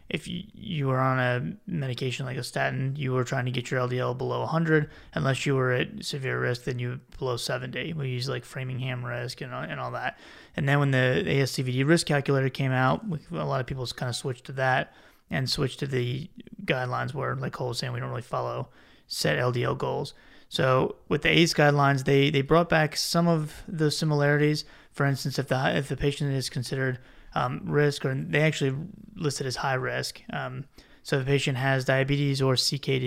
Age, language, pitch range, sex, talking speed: 20-39, English, 130-145 Hz, male, 205 wpm